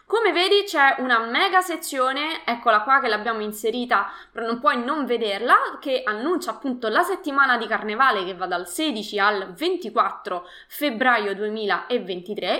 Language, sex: Italian, female